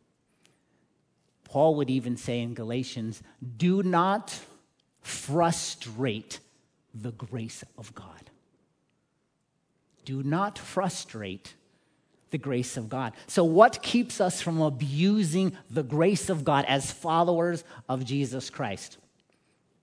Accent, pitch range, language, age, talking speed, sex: American, 115-160 Hz, English, 40-59, 105 wpm, male